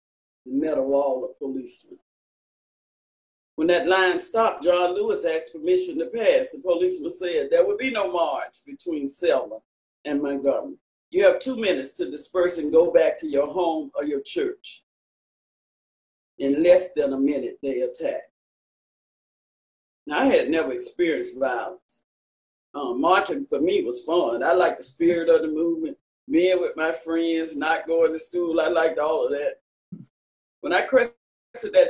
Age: 40-59